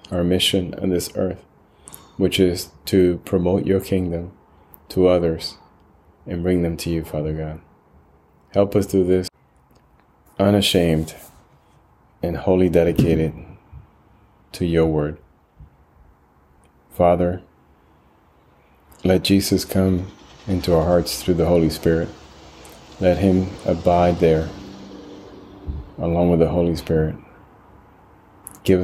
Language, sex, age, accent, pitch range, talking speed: English, male, 30-49, American, 80-95 Hz, 110 wpm